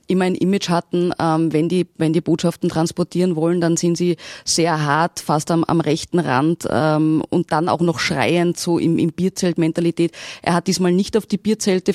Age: 20-39